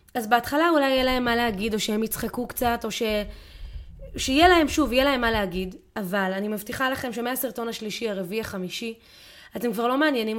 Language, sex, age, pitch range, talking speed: Hebrew, female, 20-39, 210-270 Hz, 185 wpm